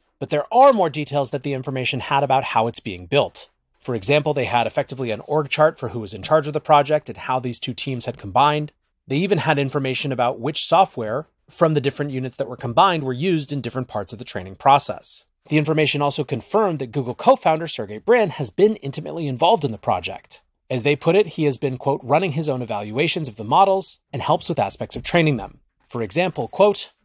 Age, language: 30-49, English